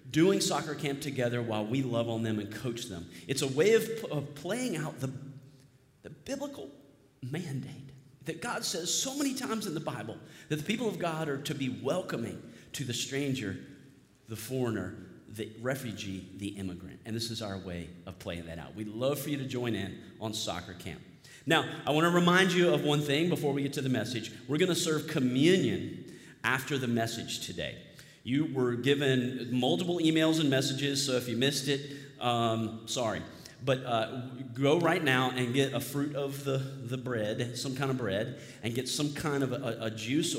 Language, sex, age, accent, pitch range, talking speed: English, male, 40-59, American, 115-145 Hz, 195 wpm